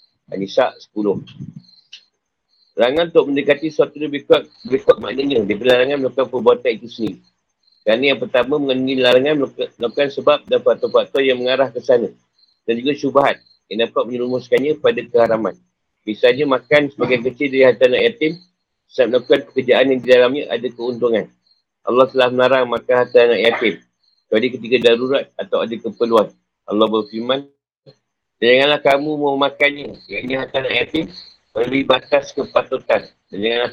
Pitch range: 120-150 Hz